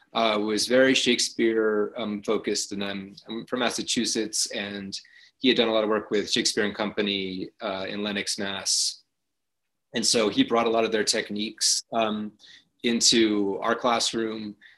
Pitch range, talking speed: 100-110 Hz, 160 wpm